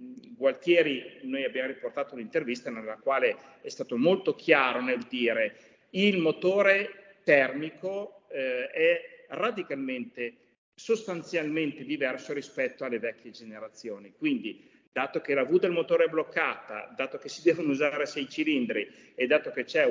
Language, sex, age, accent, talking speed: Italian, male, 40-59, native, 140 wpm